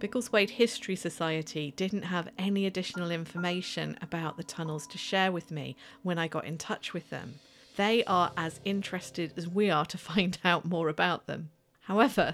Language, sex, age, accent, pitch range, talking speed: English, female, 40-59, British, 175-230 Hz, 175 wpm